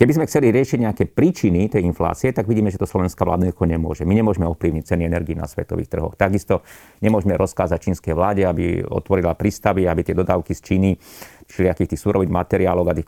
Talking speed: 200 wpm